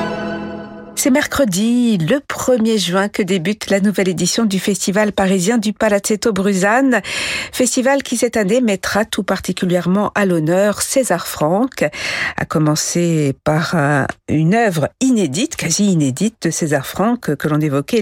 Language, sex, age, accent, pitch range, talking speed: French, female, 50-69, French, 170-235 Hz, 140 wpm